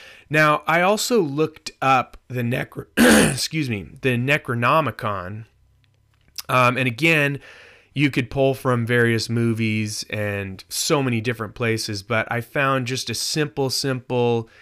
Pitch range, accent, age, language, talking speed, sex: 110-130 Hz, American, 30-49, English, 130 wpm, male